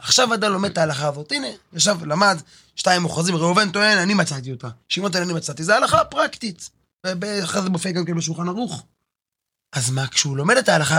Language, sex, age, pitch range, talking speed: Hebrew, male, 20-39, 150-205 Hz, 195 wpm